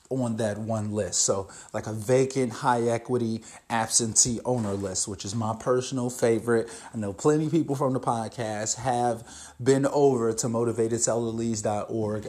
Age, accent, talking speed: 30-49, American, 145 wpm